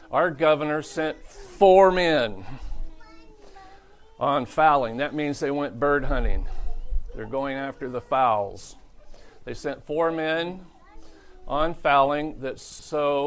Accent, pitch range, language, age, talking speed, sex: American, 130-150 Hz, English, 50-69, 115 wpm, male